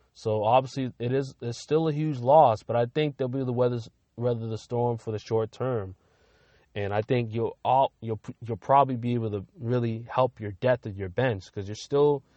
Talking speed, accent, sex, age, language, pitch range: 215 wpm, American, male, 20-39, English, 105-125 Hz